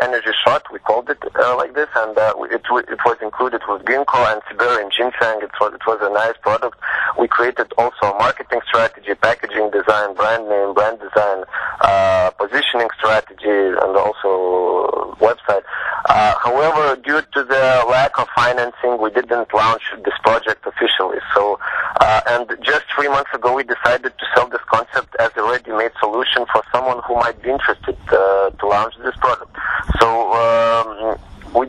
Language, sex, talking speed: English, male, 170 wpm